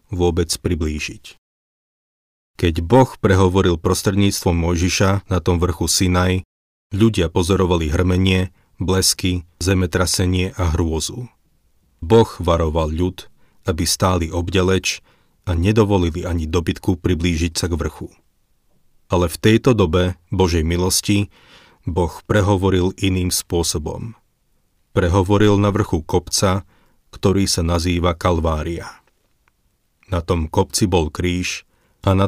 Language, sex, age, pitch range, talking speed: Slovak, male, 40-59, 85-95 Hz, 105 wpm